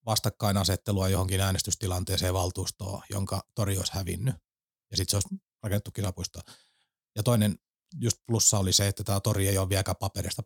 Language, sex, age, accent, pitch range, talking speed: Finnish, male, 30-49, native, 95-115 Hz, 155 wpm